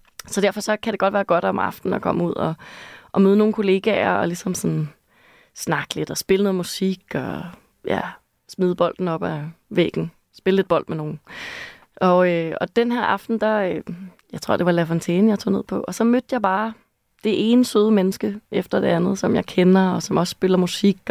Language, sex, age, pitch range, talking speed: Danish, female, 20-39, 175-205 Hz, 215 wpm